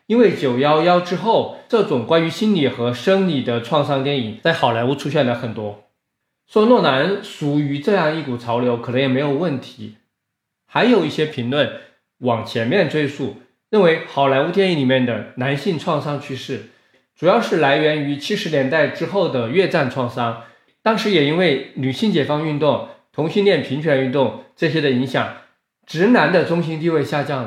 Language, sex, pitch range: Chinese, male, 125-175 Hz